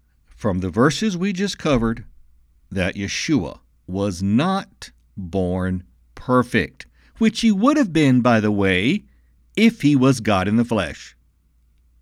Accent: American